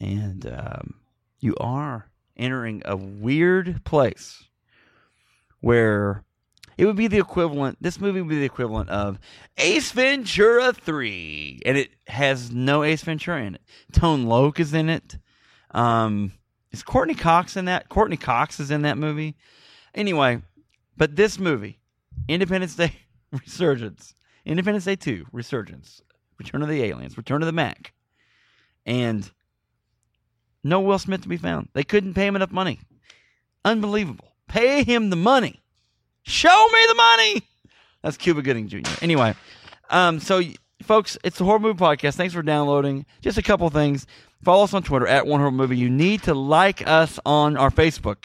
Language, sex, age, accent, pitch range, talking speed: English, male, 30-49, American, 120-180 Hz, 155 wpm